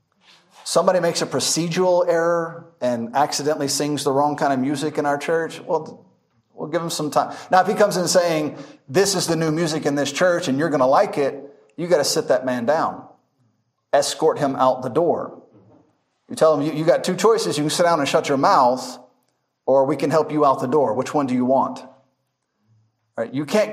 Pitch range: 140-180 Hz